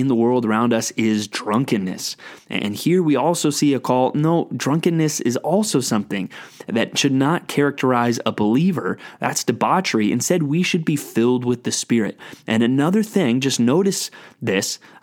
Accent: American